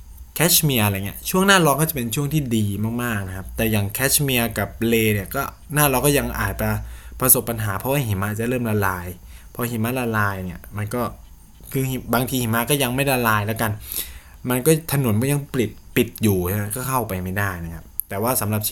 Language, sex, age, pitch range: Thai, male, 20-39, 95-130 Hz